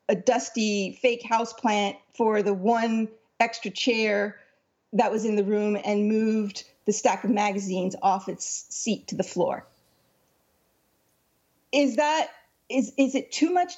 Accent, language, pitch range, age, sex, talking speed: American, English, 215-285 Hz, 40-59, female, 150 wpm